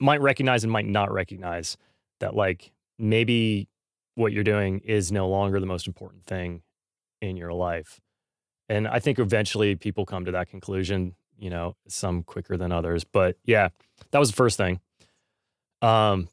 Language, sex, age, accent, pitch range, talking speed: English, male, 30-49, American, 95-110 Hz, 165 wpm